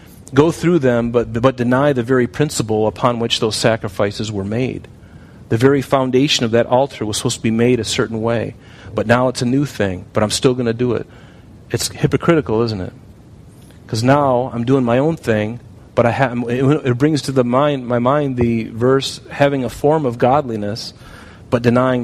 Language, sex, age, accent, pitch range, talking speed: English, male, 40-59, American, 115-140 Hz, 200 wpm